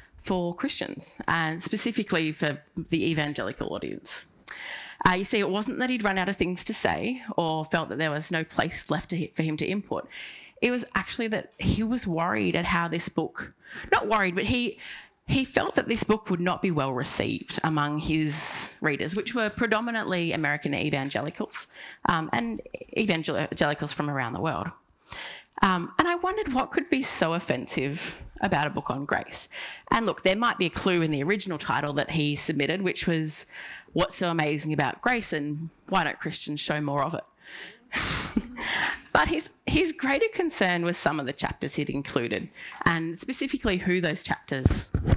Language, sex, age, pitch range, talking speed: English, female, 30-49, 150-210 Hz, 180 wpm